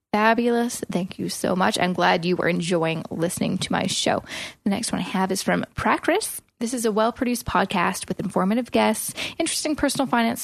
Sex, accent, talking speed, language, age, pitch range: female, American, 190 wpm, English, 20-39, 190-250 Hz